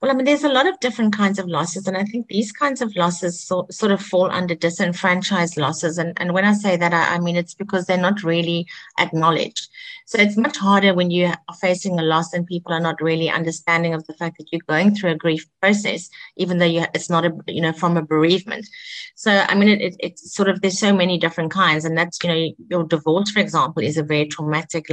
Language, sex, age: English, female, 30-49